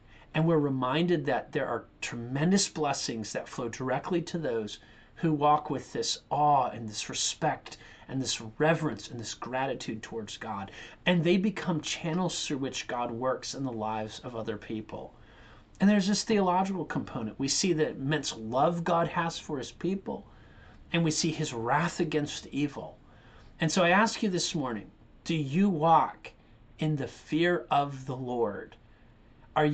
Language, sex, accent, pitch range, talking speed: English, male, American, 115-165 Hz, 165 wpm